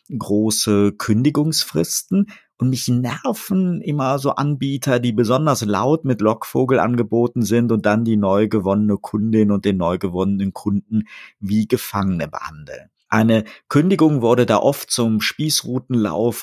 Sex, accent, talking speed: male, German, 130 wpm